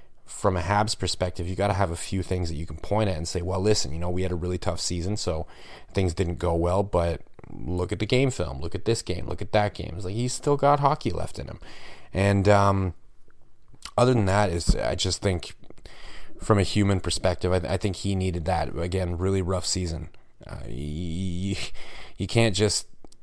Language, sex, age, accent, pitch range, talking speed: English, male, 30-49, American, 90-105 Hz, 215 wpm